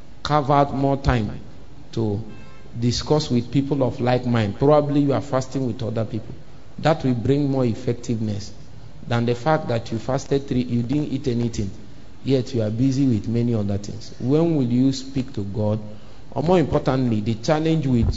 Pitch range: 110-135 Hz